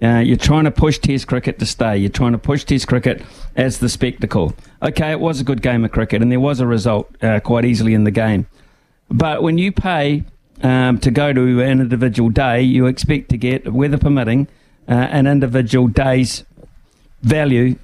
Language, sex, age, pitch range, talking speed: English, male, 50-69, 115-135 Hz, 200 wpm